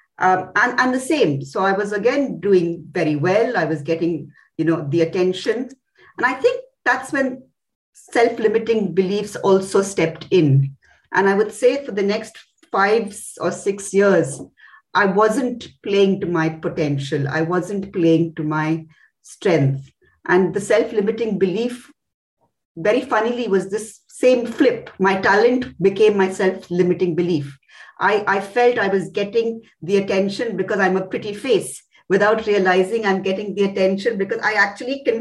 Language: English